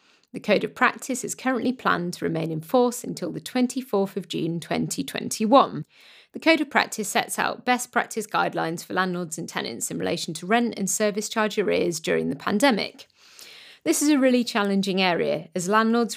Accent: British